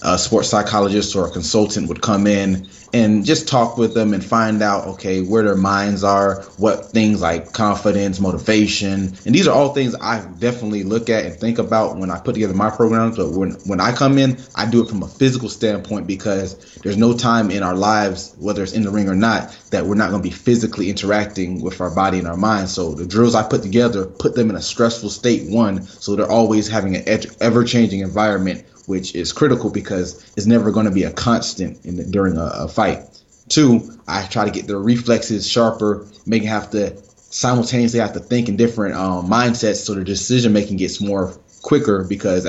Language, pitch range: English, 95-115 Hz